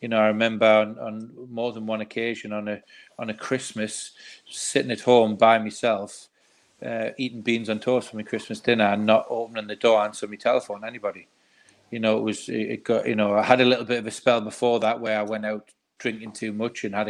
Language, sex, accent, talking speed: English, male, British, 230 wpm